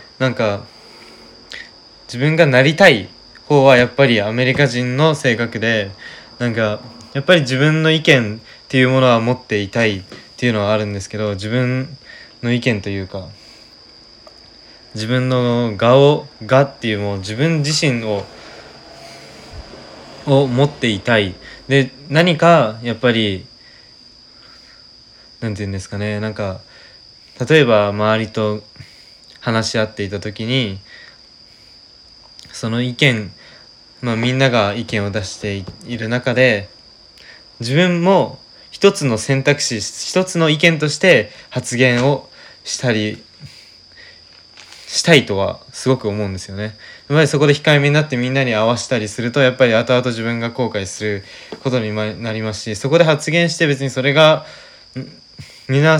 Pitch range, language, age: 110-135 Hz, Japanese, 20-39